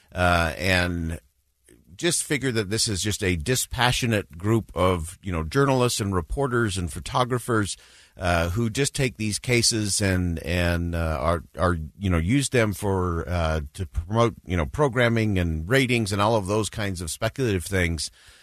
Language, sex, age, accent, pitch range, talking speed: English, male, 50-69, American, 90-120 Hz, 165 wpm